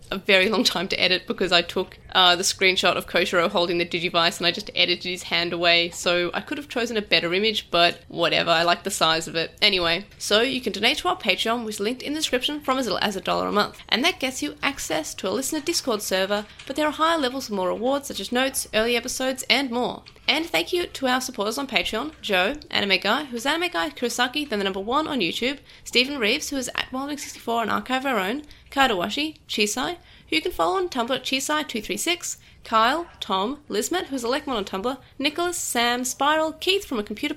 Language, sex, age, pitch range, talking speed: English, female, 30-49, 205-295 Hz, 230 wpm